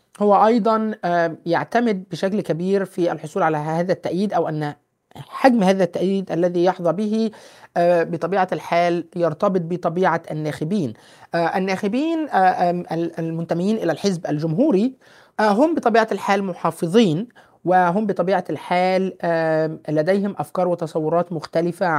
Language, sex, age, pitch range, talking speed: Arabic, male, 30-49, 165-210 Hz, 105 wpm